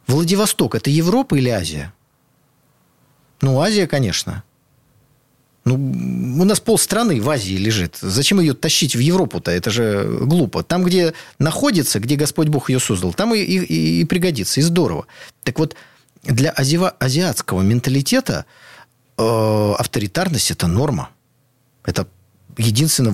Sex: male